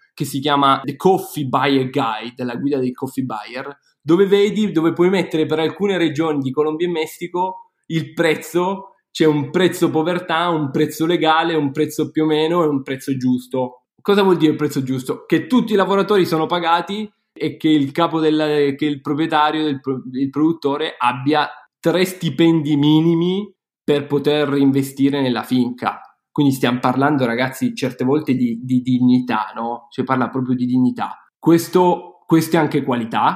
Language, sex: Italian, male